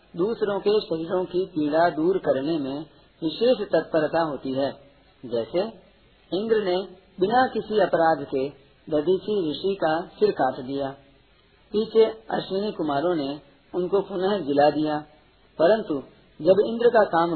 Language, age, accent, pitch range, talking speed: Hindi, 40-59, native, 150-195 Hz, 130 wpm